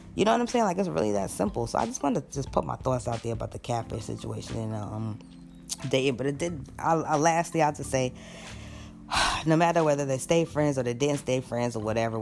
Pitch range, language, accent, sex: 110-135 Hz, English, American, female